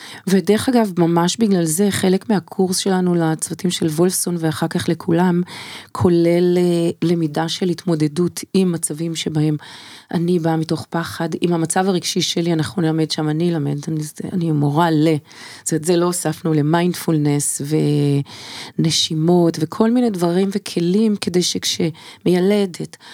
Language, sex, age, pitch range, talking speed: Hebrew, female, 30-49, 160-195 Hz, 135 wpm